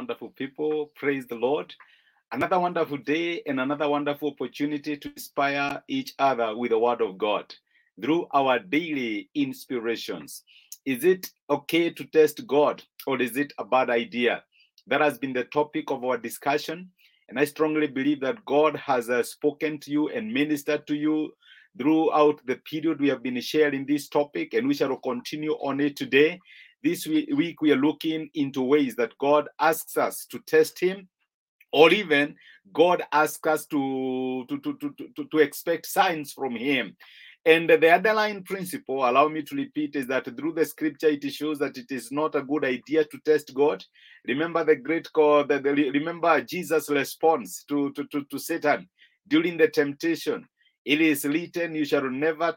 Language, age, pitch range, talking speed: English, 50-69, 140-165 Hz, 170 wpm